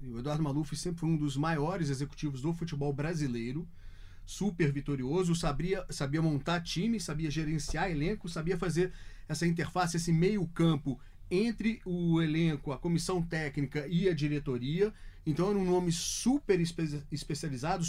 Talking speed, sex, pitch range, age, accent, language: 145 wpm, male, 150-195 Hz, 40-59, Brazilian, Portuguese